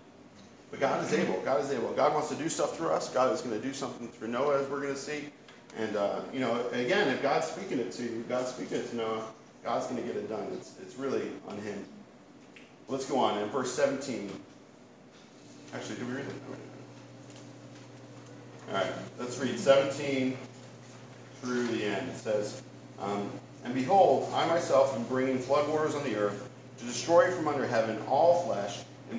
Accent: American